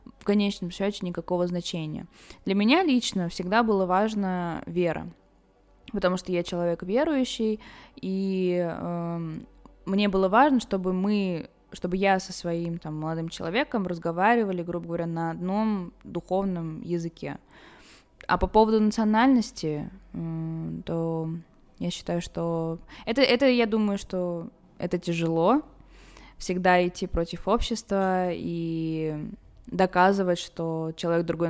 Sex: female